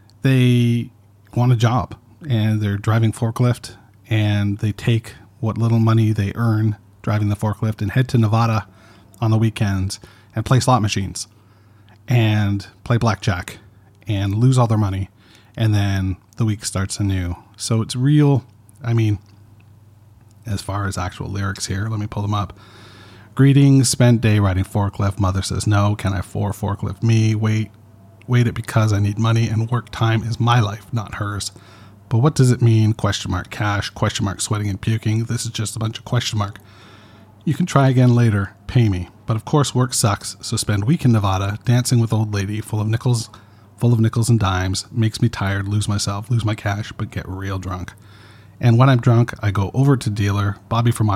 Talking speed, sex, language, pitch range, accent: 190 wpm, male, English, 100-115 Hz, American